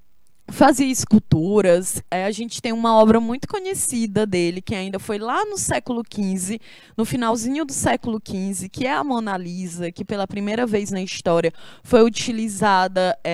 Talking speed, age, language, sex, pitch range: 155 wpm, 20-39, Portuguese, female, 195-250 Hz